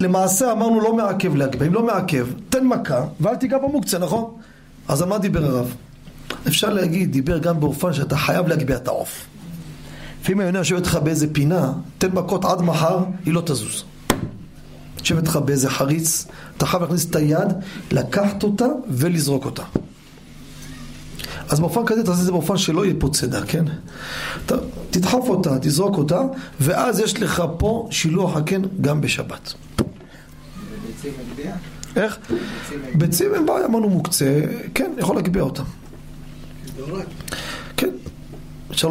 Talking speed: 140 wpm